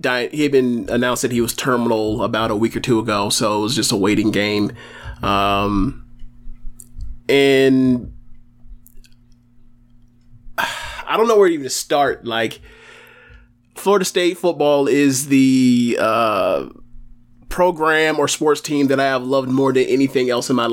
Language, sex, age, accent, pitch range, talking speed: English, male, 20-39, American, 120-145 Hz, 150 wpm